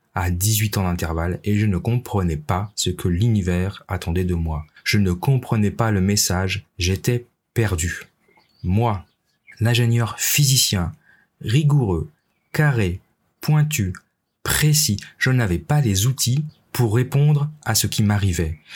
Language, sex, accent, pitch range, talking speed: French, male, French, 90-120 Hz, 130 wpm